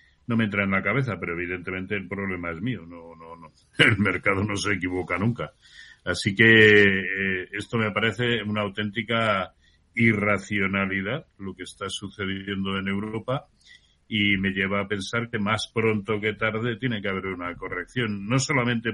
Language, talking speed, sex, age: Spanish, 165 wpm, male, 60-79